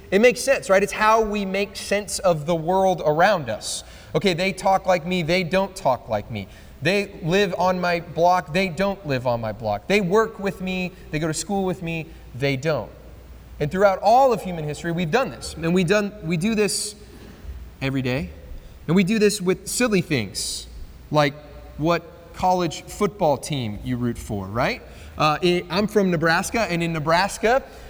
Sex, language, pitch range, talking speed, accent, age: male, English, 135-190 Hz, 185 wpm, American, 30-49